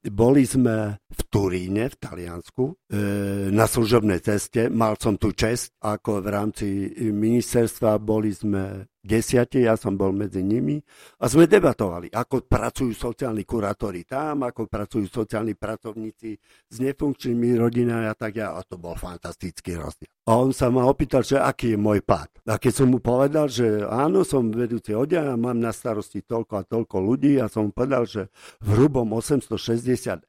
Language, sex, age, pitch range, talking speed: Slovak, male, 50-69, 105-130 Hz, 165 wpm